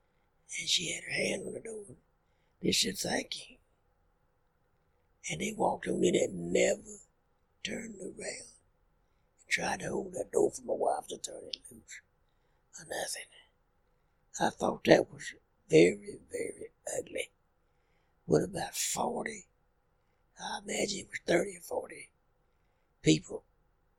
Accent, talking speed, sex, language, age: American, 135 wpm, male, English, 60-79